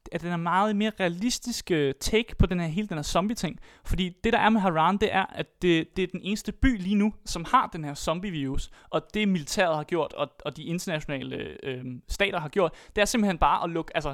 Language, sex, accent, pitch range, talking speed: Danish, male, native, 155-205 Hz, 240 wpm